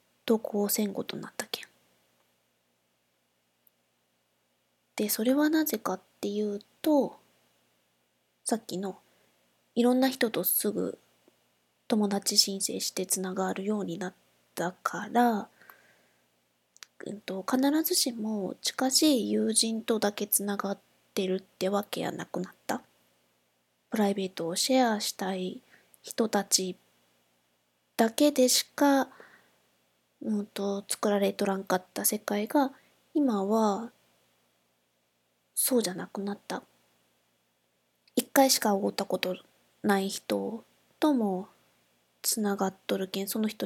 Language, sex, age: Japanese, female, 20-39